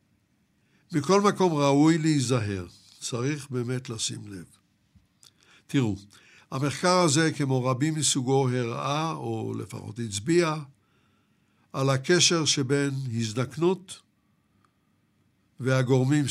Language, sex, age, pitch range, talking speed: Hebrew, male, 60-79, 115-155 Hz, 85 wpm